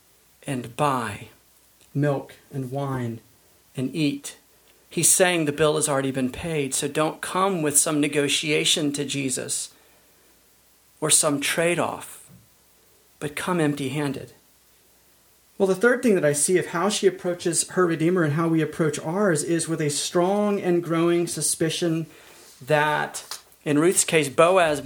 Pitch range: 145-175 Hz